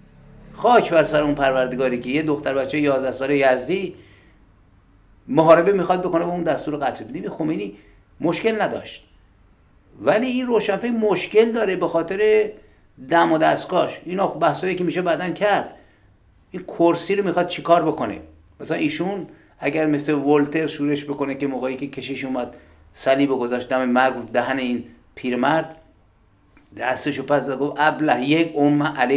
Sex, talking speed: male, 150 wpm